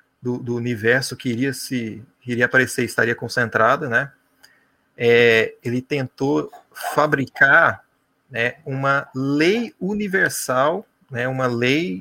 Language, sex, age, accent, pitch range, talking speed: Portuguese, male, 30-49, Brazilian, 120-155 Hz, 110 wpm